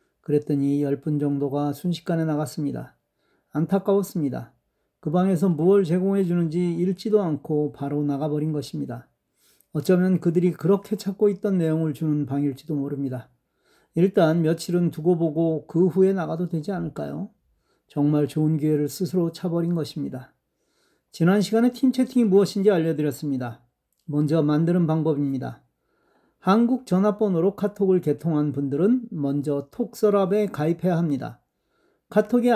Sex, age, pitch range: male, 40-59, 150-195 Hz